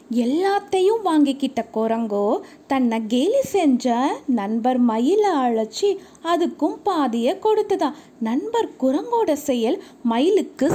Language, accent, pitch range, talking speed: Tamil, native, 240-345 Hz, 90 wpm